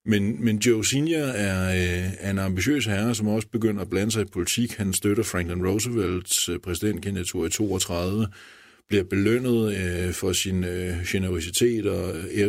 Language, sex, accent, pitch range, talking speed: Danish, male, native, 90-105 Hz, 165 wpm